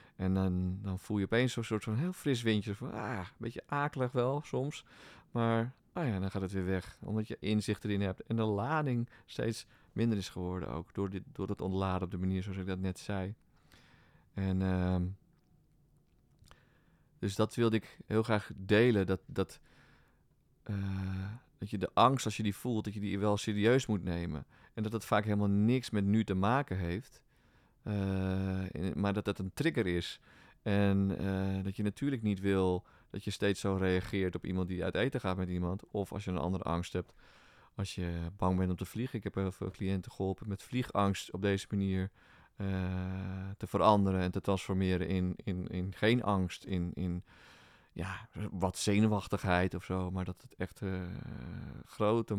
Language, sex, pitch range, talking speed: Dutch, male, 95-110 Hz, 190 wpm